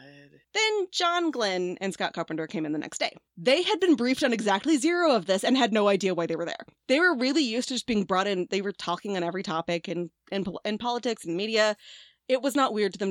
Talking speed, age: 245 wpm, 20-39